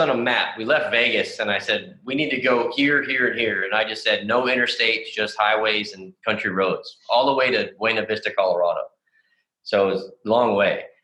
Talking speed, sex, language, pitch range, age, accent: 225 wpm, male, English, 105-155 Hz, 20-39, American